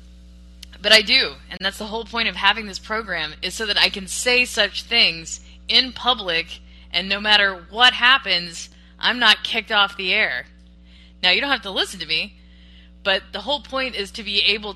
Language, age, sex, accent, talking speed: English, 20-39, female, American, 200 wpm